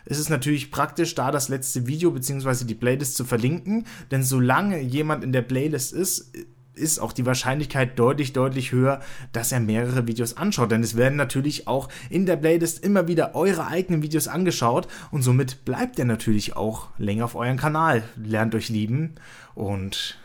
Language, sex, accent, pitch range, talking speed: German, male, German, 115-140 Hz, 180 wpm